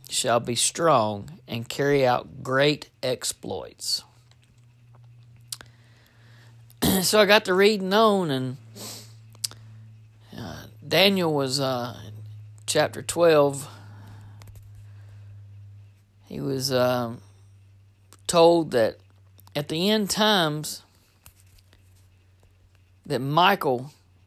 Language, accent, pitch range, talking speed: English, American, 95-140 Hz, 80 wpm